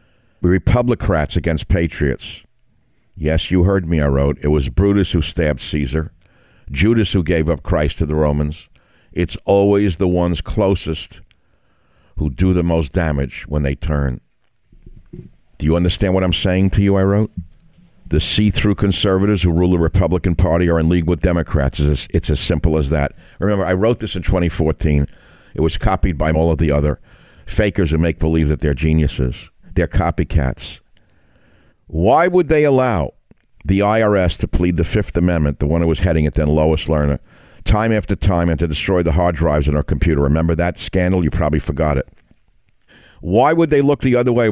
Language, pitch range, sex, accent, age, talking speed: English, 80-100 Hz, male, American, 60-79, 180 wpm